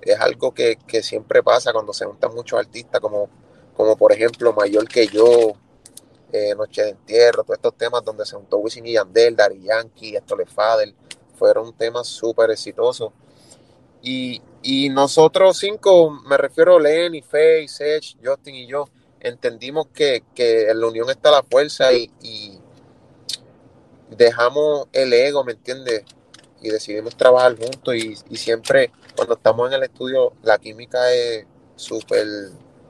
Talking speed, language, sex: 150 wpm, Spanish, male